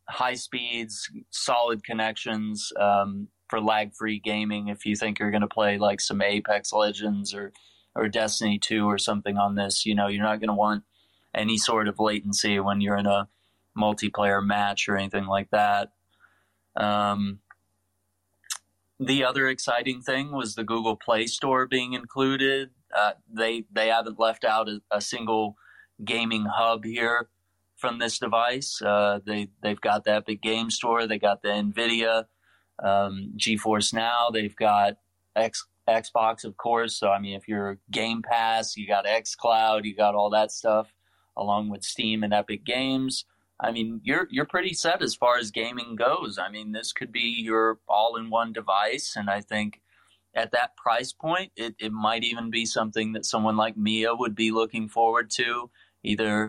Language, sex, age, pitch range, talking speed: English, male, 20-39, 105-115 Hz, 170 wpm